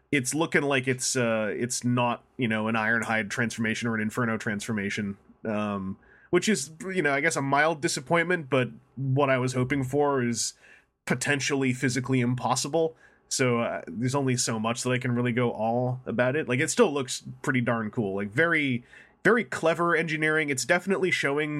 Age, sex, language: 20-39, male, English